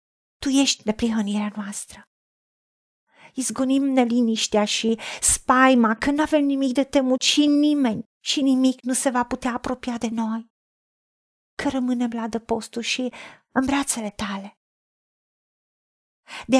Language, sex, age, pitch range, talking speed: Romanian, female, 40-59, 230-270 Hz, 125 wpm